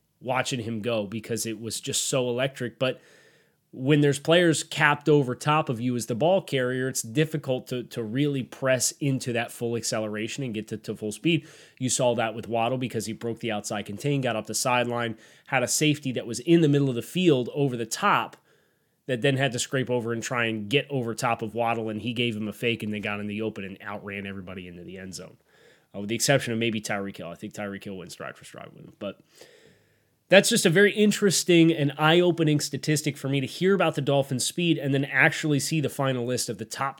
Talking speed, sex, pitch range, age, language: 235 wpm, male, 115-150 Hz, 20-39, English